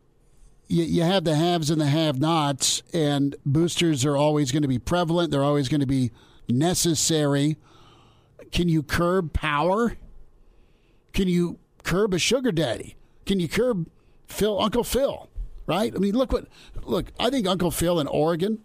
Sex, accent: male, American